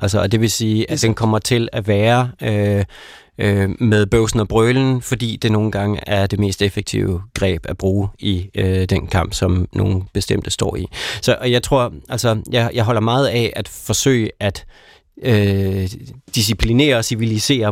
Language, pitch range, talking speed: Danish, 105-125 Hz, 180 wpm